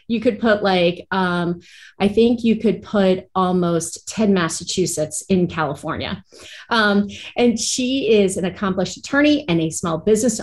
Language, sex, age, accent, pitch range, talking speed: English, female, 30-49, American, 170-220 Hz, 150 wpm